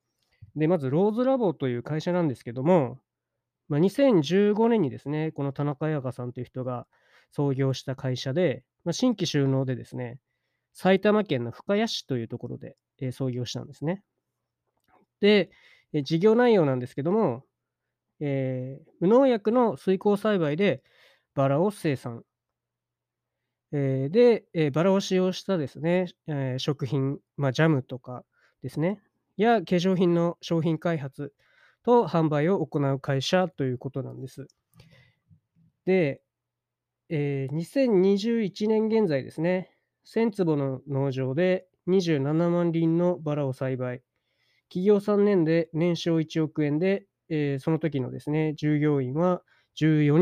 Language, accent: Japanese, native